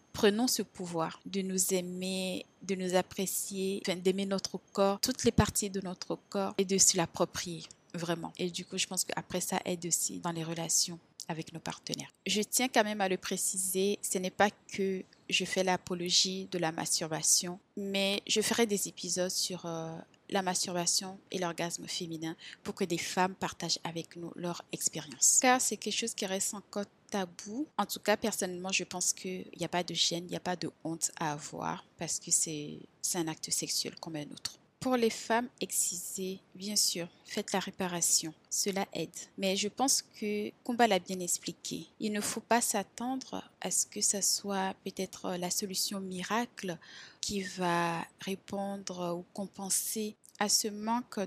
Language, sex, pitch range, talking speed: French, female, 175-205 Hz, 185 wpm